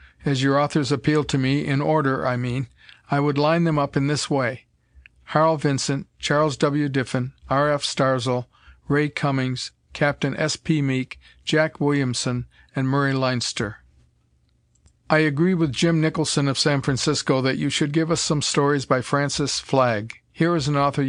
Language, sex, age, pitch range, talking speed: English, male, 50-69, 125-150 Hz, 170 wpm